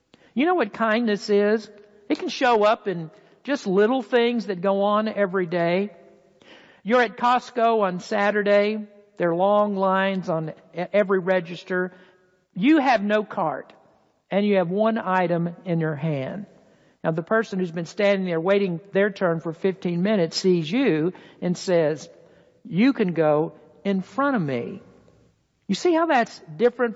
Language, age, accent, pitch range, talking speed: English, 60-79, American, 180-230 Hz, 160 wpm